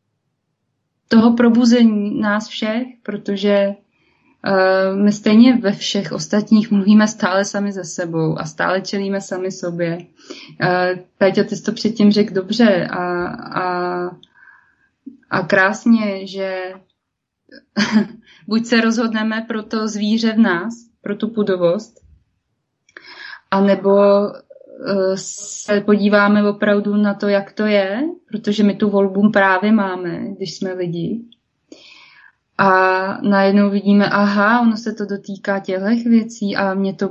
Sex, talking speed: female, 120 wpm